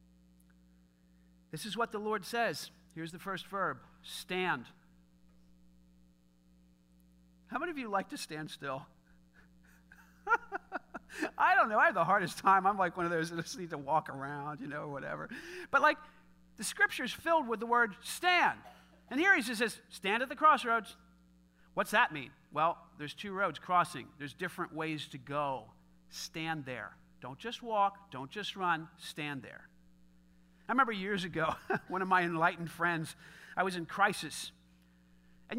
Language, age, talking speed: English, 50-69, 165 wpm